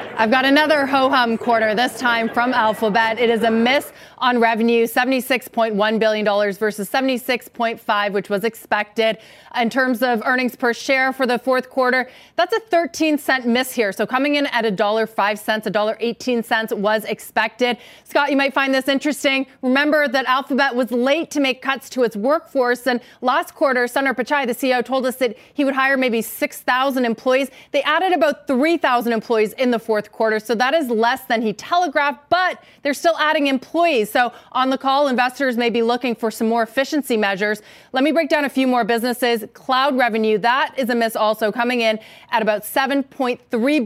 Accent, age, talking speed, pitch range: American, 30-49, 185 wpm, 225-270 Hz